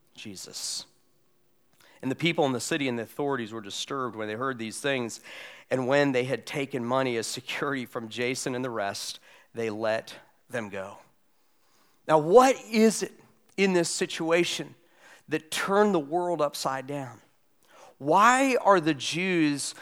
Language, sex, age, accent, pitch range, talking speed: English, male, 40-59, American, 140-180 Hz, 155 wpm